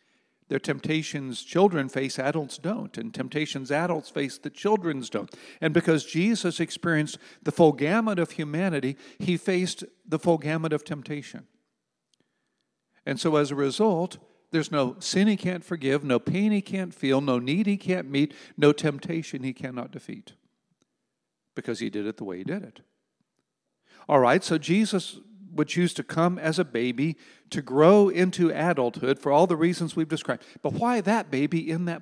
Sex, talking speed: male, 170 wpm